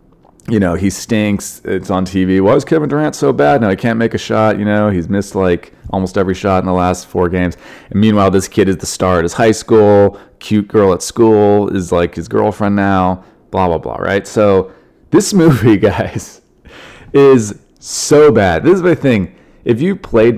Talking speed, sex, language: 205 wpm, male, English